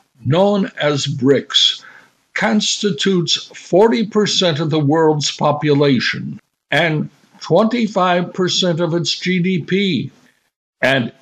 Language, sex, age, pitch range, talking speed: English, male, 60-79, 135-180 Hz, 80 wpm